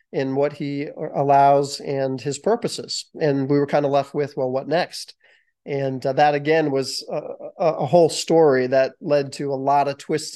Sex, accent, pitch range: male, American, 140-160 Hz